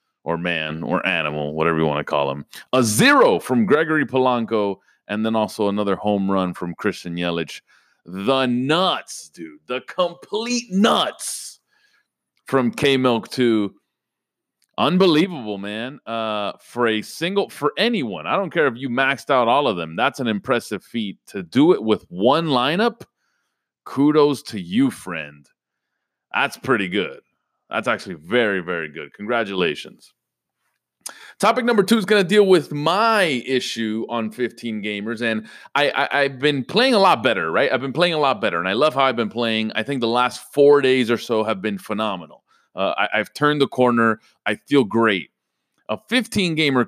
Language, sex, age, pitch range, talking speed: English, male, 30-49, 110-155 Hz, 165 wpm